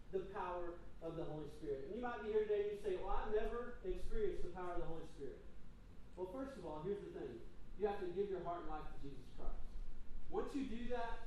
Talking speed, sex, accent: 250 wpm, male, American